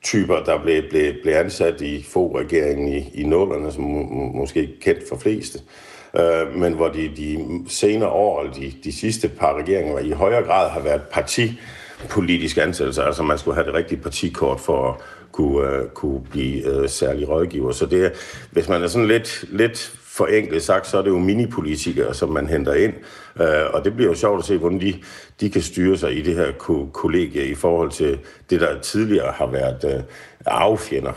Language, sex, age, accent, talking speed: Danish, male, 50-69, native, 180 wpm